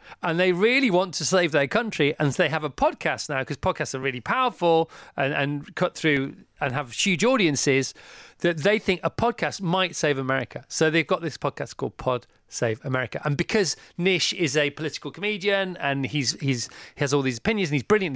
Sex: male